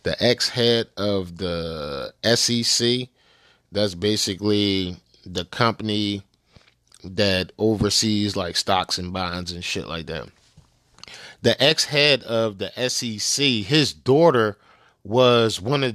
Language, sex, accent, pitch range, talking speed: English, male, American, 105-140 Hz, 110 wpm